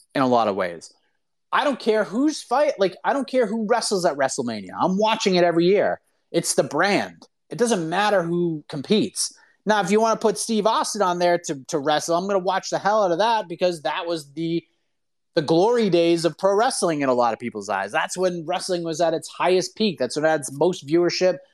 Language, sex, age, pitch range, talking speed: English, male, 30-49, 145-185 Hz, 235 wpm